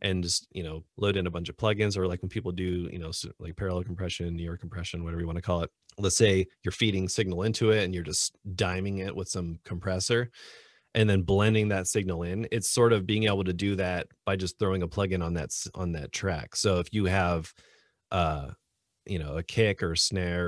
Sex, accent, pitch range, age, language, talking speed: male, American, 85-100 Hz, 30-49, English, 230 wpm